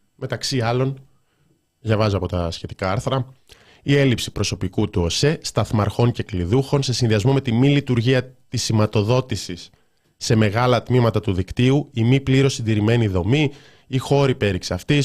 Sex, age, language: male, 20-39, Greek